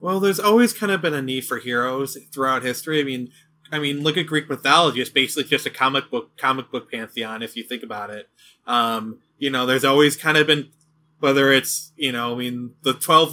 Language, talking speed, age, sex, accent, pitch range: English, 225 wpm, 20-39, male, American, 125-155 Hz